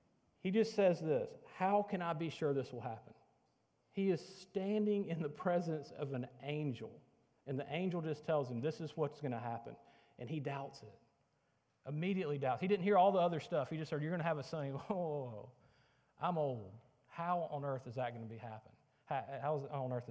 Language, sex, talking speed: English, male, 220 wpm